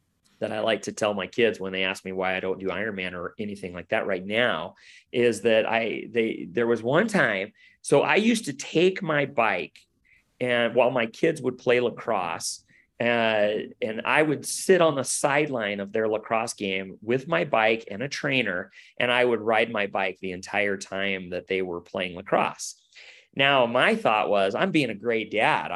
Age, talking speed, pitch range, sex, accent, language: 30-49, 200 wpm, 100-135 Hz, male, American, English